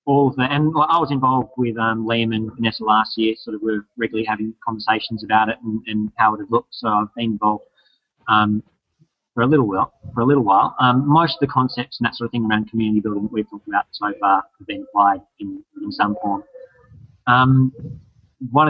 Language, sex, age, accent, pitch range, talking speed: English, male, 30-49, Australian, 110-130 Hz, 225 wpm